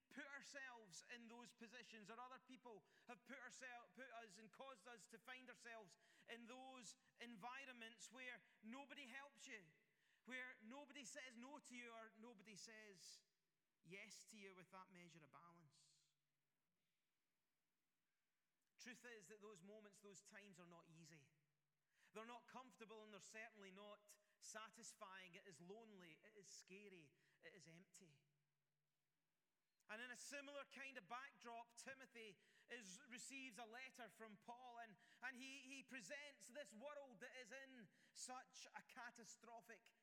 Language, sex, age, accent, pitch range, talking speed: English, male, 30-49, British, 195-255 Hz, 145 wpm